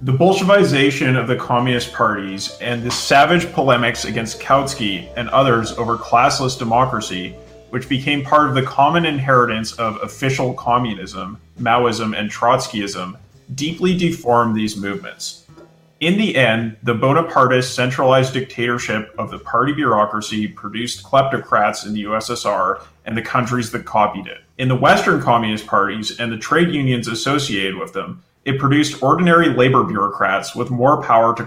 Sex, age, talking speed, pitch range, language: male, 30-49, 145 wpm, 110-145 Hz, English